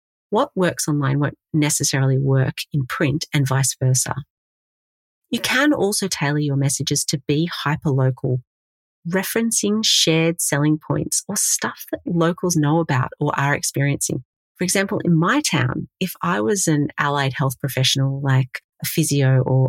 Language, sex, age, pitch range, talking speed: English, female, 40-59, 130-165 Hz, 150 wpm